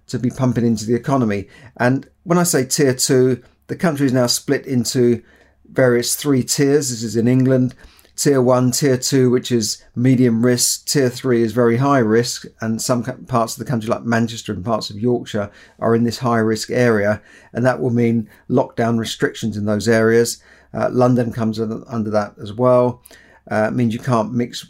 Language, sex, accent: English, male, British